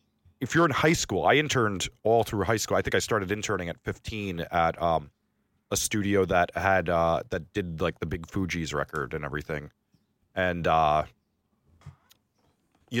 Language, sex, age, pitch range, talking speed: English, male, 30-49, 90-115 Hz, 170 wpm